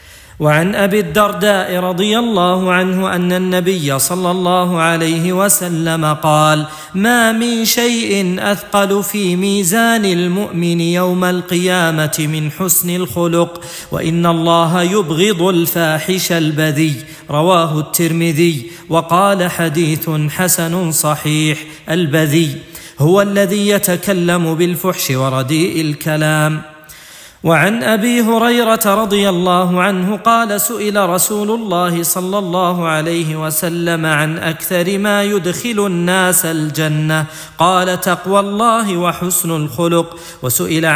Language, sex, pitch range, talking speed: Arabic, male, 160-195 Hz, 100 wpm